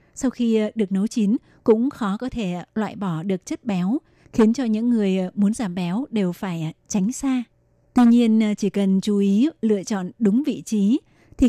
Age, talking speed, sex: 20-39, 195 wpm, female